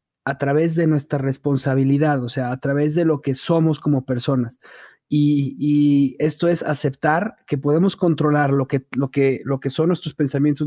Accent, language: Mexican, Spanish